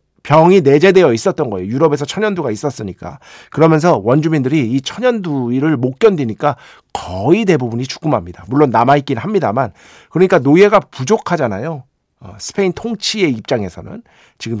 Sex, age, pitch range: male, 50-69, 120-185 Hz